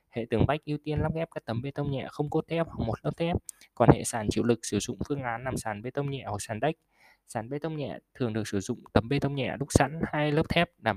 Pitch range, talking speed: 110-145 Hz, 295 wpm